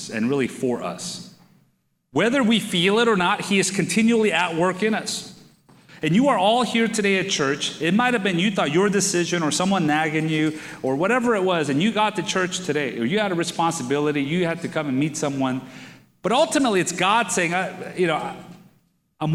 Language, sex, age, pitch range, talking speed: English, male, 40-59, 160-210 Hz, 210 wpm